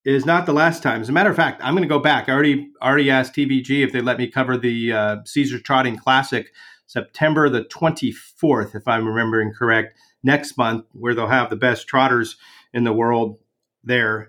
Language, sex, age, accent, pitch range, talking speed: English, male, 40-59, American, 130-155 Hz, 205 wpm